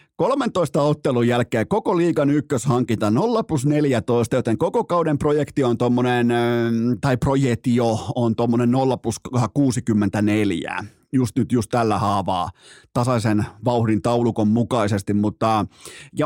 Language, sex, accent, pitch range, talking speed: Finnish, male, native, 120-175 Hz, 100 wpm